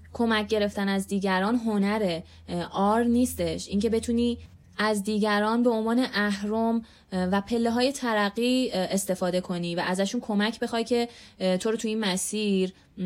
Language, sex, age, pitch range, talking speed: Persian, female, 20-39, 175-225 Hz, 135 wpm